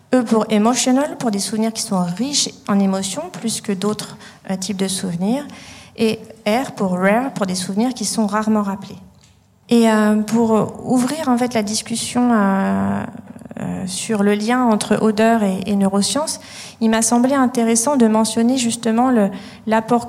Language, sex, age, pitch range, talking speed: French, female, 40-59, 205-235 Hz, 165 wpm